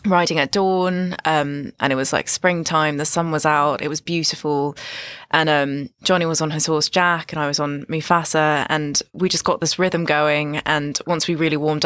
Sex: female